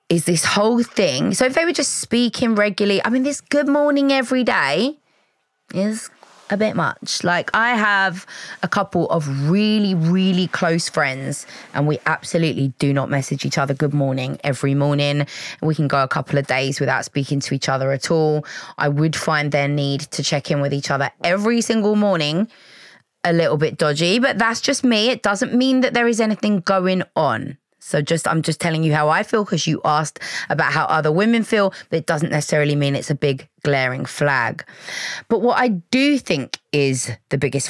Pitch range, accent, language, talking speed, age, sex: 145-210 Hz, British, English, 195 wpm, 20-39, female